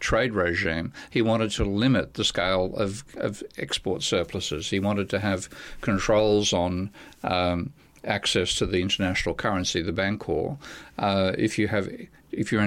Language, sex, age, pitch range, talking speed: English, male, 50-69, 95-110 Hz, 155 wpm